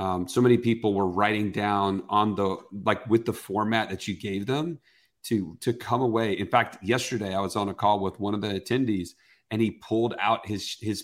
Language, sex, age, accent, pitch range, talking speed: English, male, 40-59, American, 95-115 Hz, 215 wpm